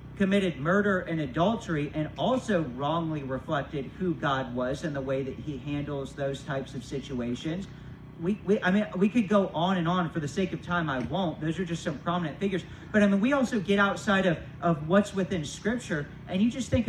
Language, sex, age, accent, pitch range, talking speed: English, male, 40-59, American, 145-190 Hz, 215 wpm